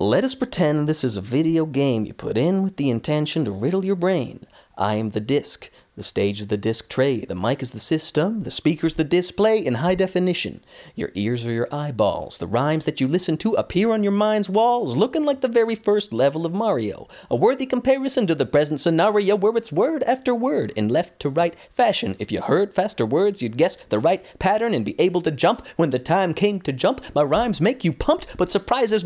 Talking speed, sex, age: 220 wpm, male, 30-49